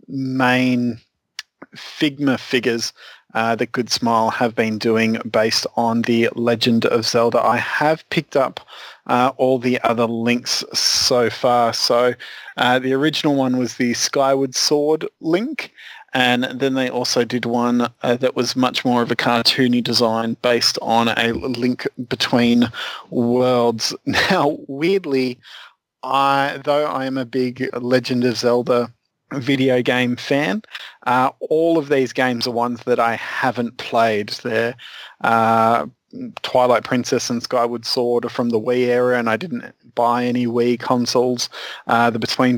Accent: Australian